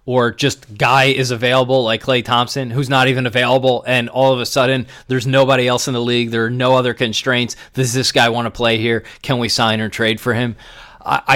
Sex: male